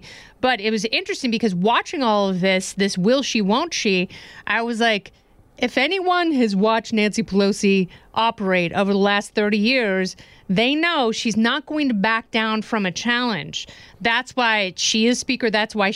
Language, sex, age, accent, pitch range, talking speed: English, female, 30-49, American, 200-245 Hz, 175 wpm